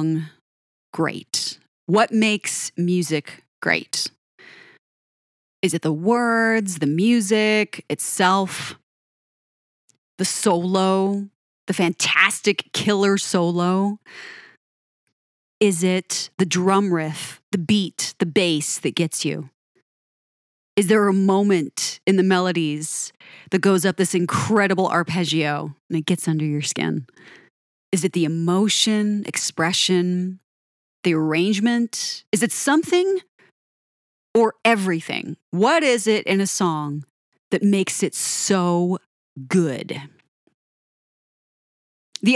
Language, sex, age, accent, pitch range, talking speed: English, female, 30-49, American, 160-200 Hz, 105 wpm